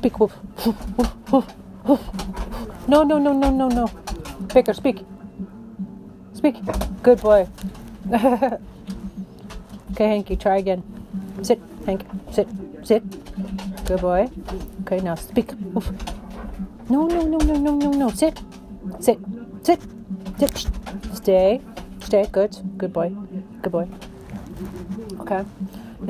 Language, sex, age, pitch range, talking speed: English, female, 40-59, 195-280 Hz, 100 wpm